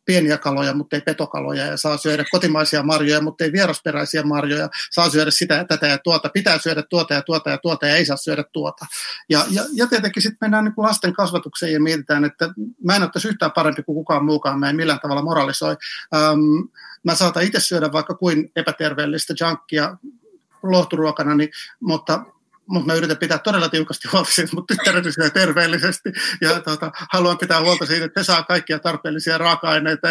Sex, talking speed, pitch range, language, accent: male, 180 wpm, 150-175 Hz, Finnish, native